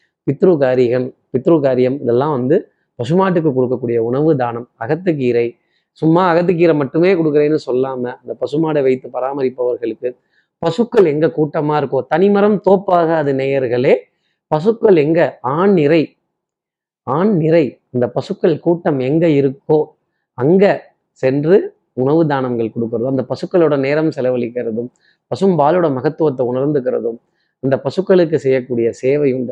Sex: male